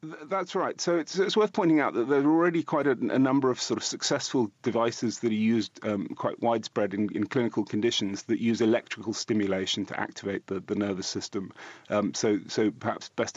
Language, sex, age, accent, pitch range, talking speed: English, male, 30-49, British, 105-130 Hz, 205 wpm